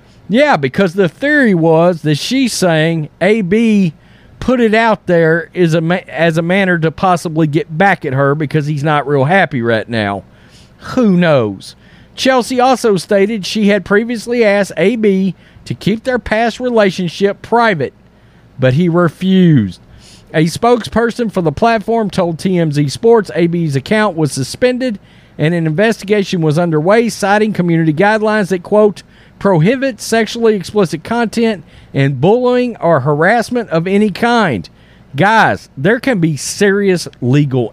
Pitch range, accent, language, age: 155-225 Hz, American, English, 40-59